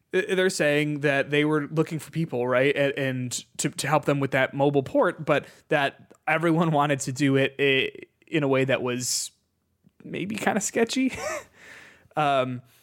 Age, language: 20-39, English